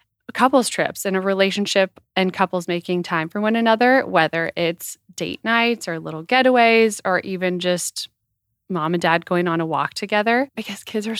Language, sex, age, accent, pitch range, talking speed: English, female, 20-39, American, 175-215 Hz, 190 wpm